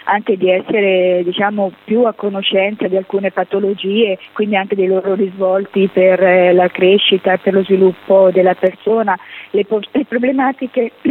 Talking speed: 135 wpm